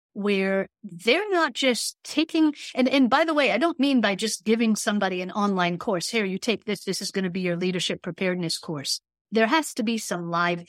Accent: American